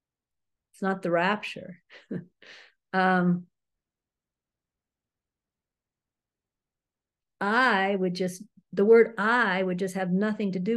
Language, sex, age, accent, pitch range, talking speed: English, female, 50-69, American, 175-215 Hz, 95 wpm